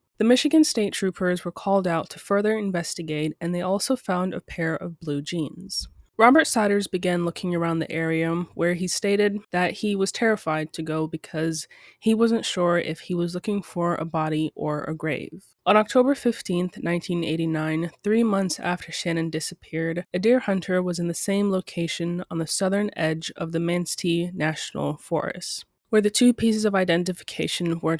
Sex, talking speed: female, 175 wpm